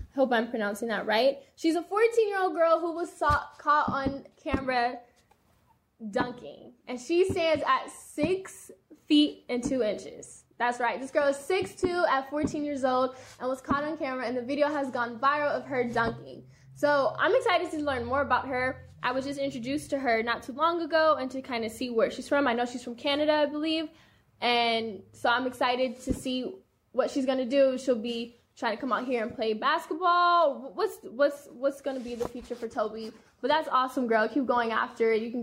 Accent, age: American, 10-29